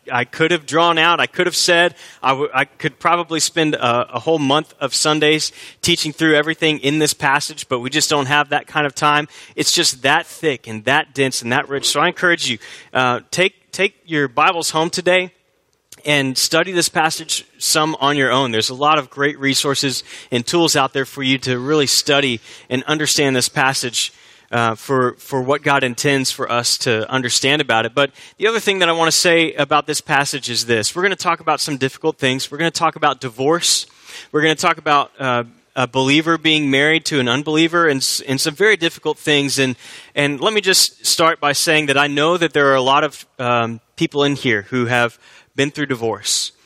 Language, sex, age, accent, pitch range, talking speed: English, male, 30-49, American, 130-160 Hz, 215 wpm